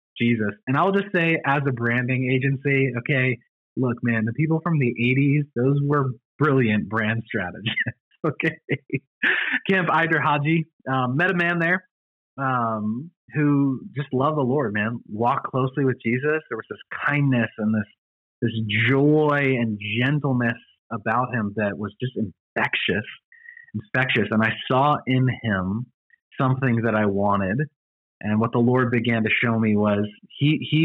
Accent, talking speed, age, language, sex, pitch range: American, 150 wpm, 30-49, English, male, 105-140 Hz